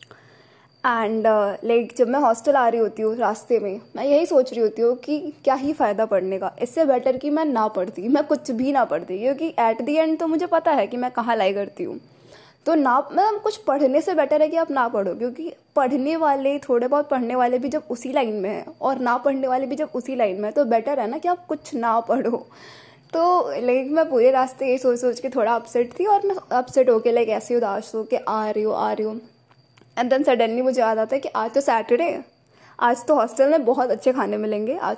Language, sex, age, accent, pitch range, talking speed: Hindi, female, 20-39, native, 220-280 Hz, 240 wpm